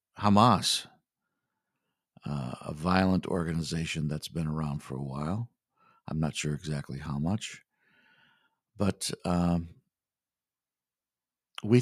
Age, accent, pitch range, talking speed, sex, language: 50-69, American, 75-100 Hz, 100 wpm, male, English